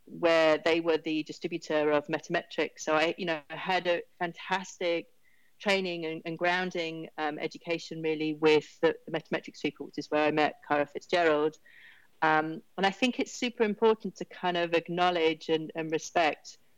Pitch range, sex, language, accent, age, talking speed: 155-180 Hz, female, English, British, 40-59, 170 wpm